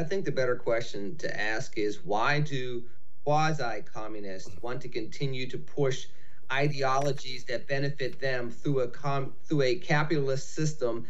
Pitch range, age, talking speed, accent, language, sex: 135-170 Hz, 30-49, 140 wpm, American, English, male